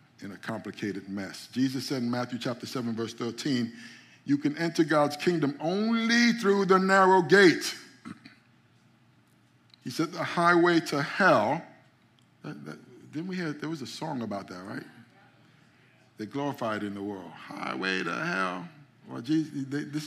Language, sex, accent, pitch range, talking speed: English, male, American, 125-165 Hz, 155 wpm